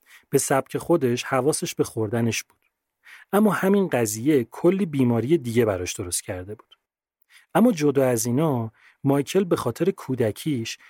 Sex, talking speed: male, 140 wpm